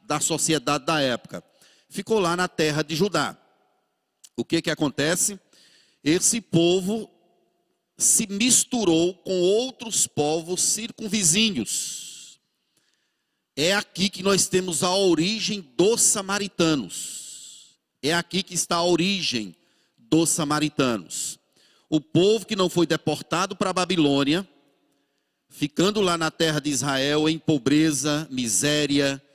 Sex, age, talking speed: male, 40-59, 115 wpm